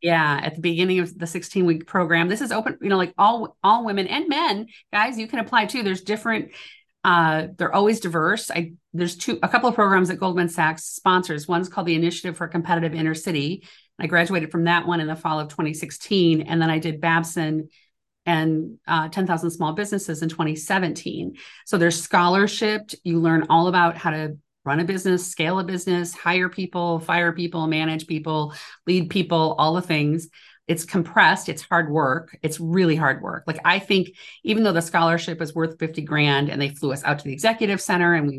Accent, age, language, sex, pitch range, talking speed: American, 40-59, English, female, 160-185 Hz, 200 wpm